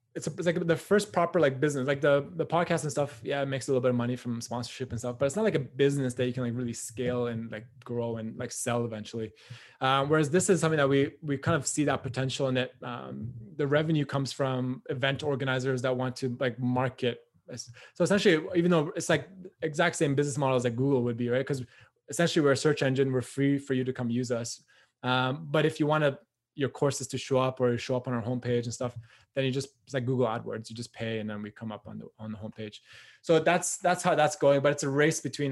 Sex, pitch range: male, 120-145 Hz